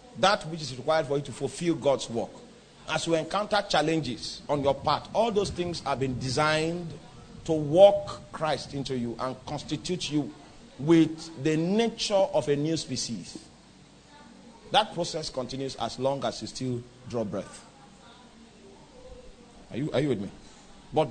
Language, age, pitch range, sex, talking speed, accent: English, 40-59, 135-175 Hz, male, 155 wpm, Nigerian